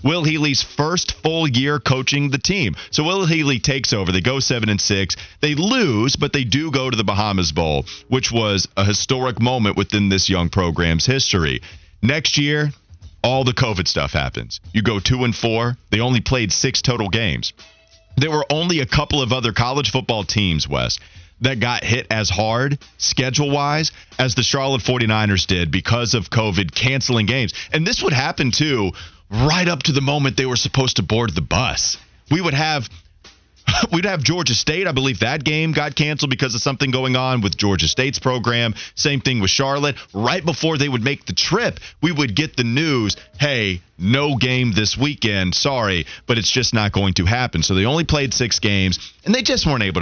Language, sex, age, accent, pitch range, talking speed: English, male, 30-49, American, 95-145 Hz, 195 wpm